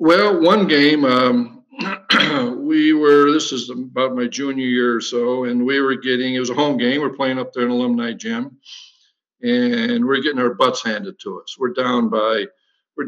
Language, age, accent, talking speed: English, 60-79, American, 195 wpm